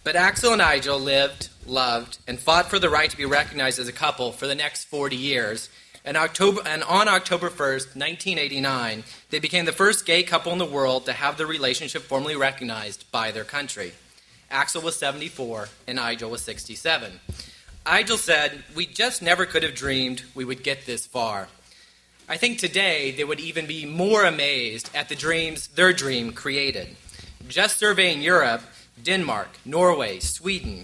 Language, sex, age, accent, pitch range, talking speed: English, male, 30-49, American, 130-175 Hz, 165 wpm